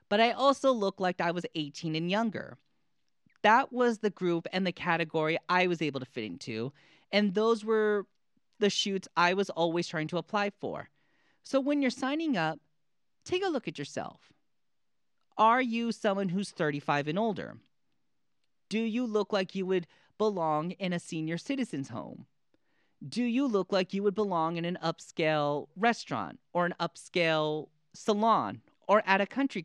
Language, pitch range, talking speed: English, 155-215 Hz, 170 wpm